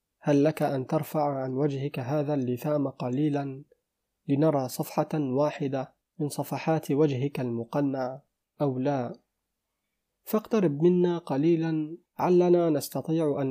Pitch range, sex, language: 135-160 Hz, male, Arabic